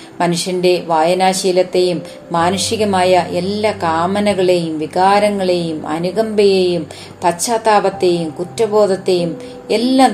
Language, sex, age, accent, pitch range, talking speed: Malayalam, female, 30-49, native, 175-205 Hz, 60 wpm